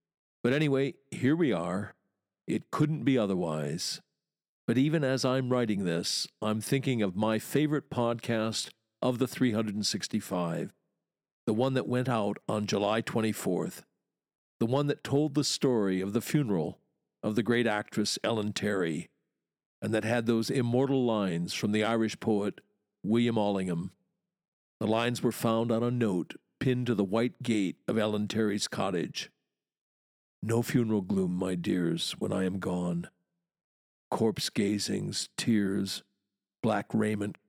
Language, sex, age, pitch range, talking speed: English, male, 50-69, 100-125 Hz, 140 wpm